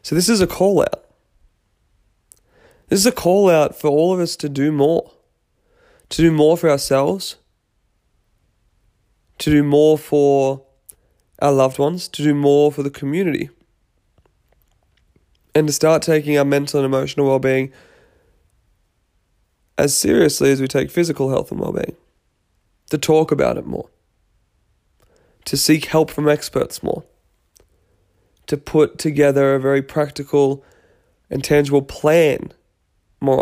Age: 20-39